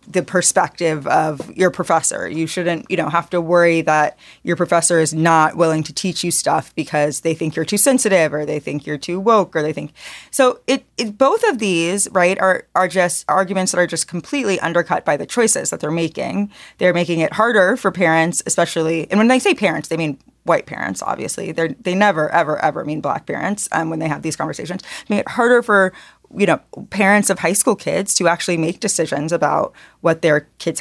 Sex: female